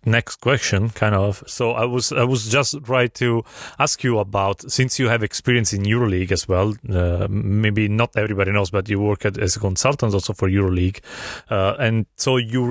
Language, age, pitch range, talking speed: Italian, 30-49, 105-125 Hz, 200 wpm